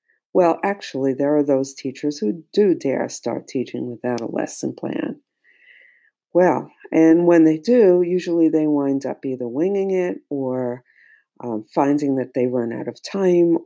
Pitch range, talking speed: 130-195 Hz, 160 wpm